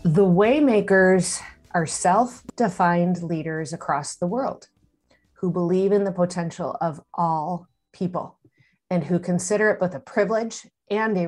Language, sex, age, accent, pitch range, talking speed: English, female, 40-59, American, 165-200 Hz, 135 wpm